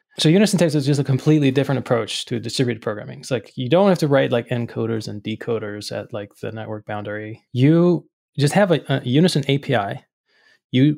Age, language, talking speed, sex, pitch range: 20-39, English, 195 wpm, male, 115-145 Hz